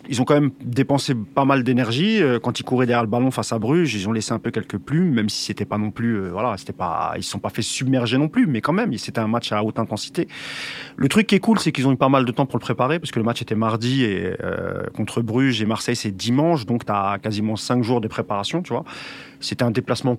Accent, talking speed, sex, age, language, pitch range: French, 275 wpm, male, 30-49, French, 110-140 Hz